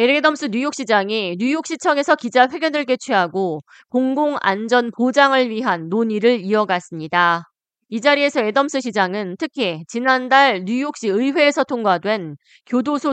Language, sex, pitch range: Korean, female, 200-270 Hz